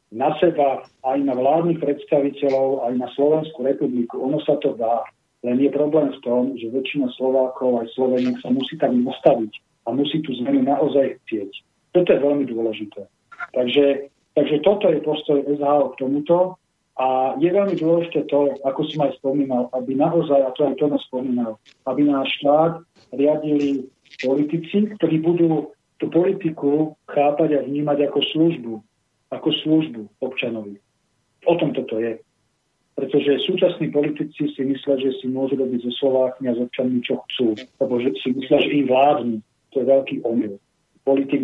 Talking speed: 160 wpm